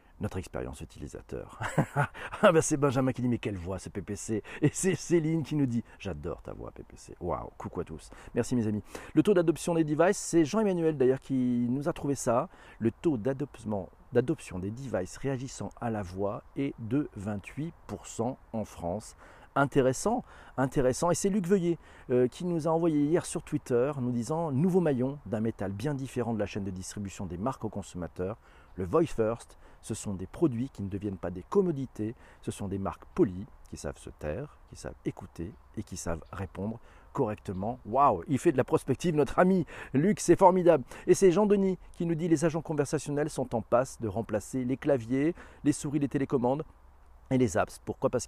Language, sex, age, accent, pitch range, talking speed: French, male, 40-59, French, 105-150 Hz, 190 wpm